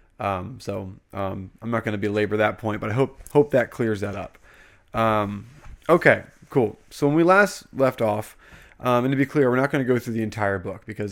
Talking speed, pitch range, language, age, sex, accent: 225 wpm, 105-120 Hz, English, 20-39, male, American